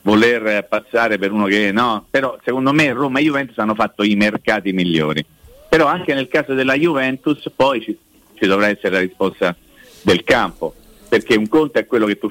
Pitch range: 95-130 Hz